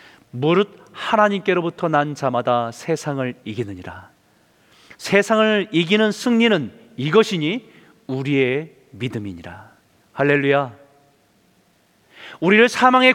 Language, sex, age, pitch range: Korean, male, 40-59, 140-225 Hz